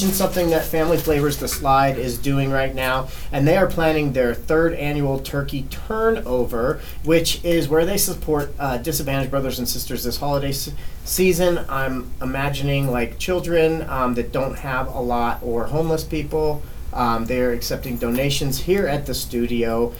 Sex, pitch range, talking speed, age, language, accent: male, 120-155 Hz, 160 wpm, 40-59, English, American